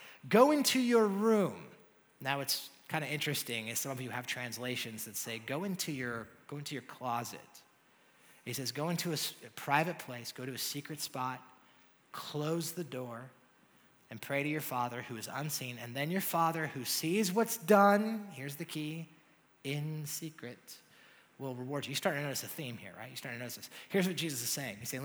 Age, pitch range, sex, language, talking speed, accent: 30-49, 130-185 Hz, male, English, 200 wpm, American